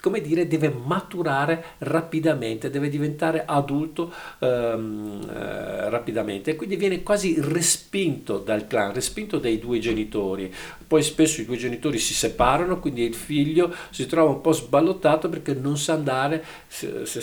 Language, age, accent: Italian, 50-69, native